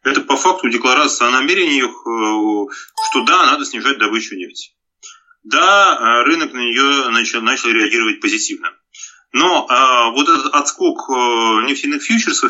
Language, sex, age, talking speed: Russian, male, 30-49, 130 wpm